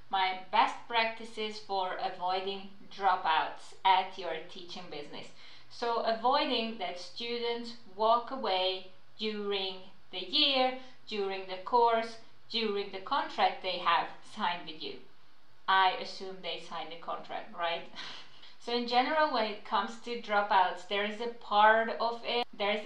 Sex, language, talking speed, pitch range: female, English, 140 wpm, 185-225 Hz